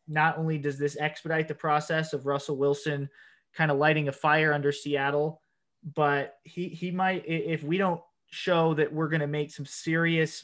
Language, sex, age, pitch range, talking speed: English, male, 20-39, 145-170 Hz, 185 wpm